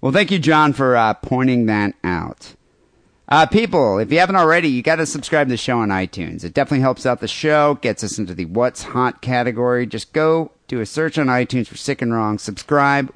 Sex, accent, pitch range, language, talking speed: male, American, 105-145 Hz, English, 225 wpm